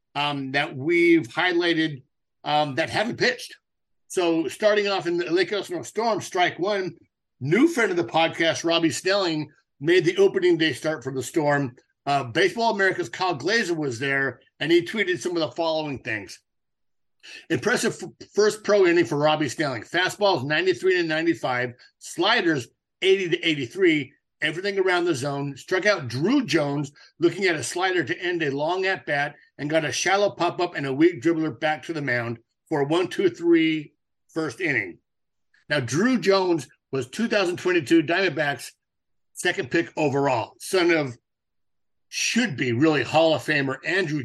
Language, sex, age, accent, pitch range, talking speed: English, male, 50-69, American, 145-210 Hz, 165 wpm